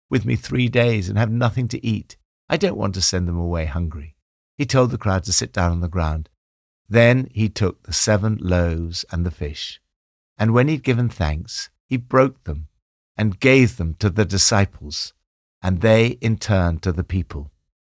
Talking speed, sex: 190 wpm, male